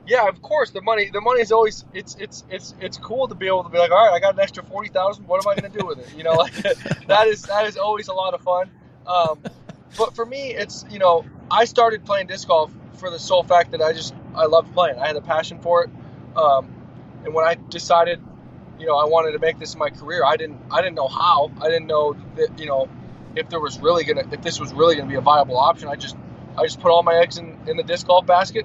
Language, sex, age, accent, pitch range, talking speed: English, male, 20-39, American, 165-200 Hz, 275 wpm